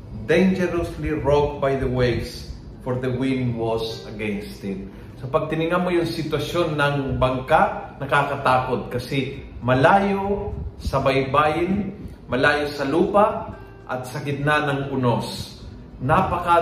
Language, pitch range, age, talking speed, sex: Filipino, 130-165 Hz, 40-59, 115 wpm, male